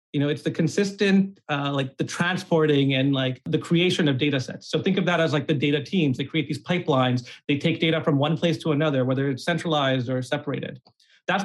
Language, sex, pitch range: English, male, 145-180 Hz